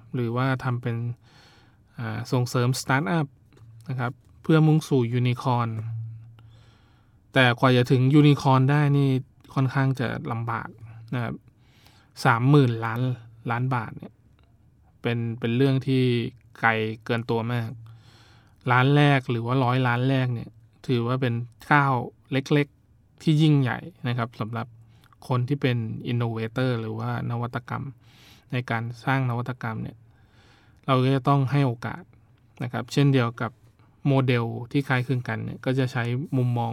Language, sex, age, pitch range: Thai, male, 20-39, 115-135 Hz